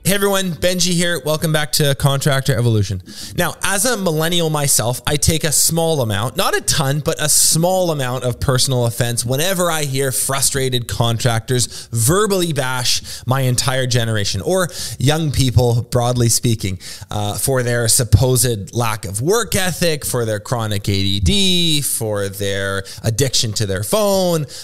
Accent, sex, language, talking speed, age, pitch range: American, male, English, 150 wpm, 20-39, 110-150 Hz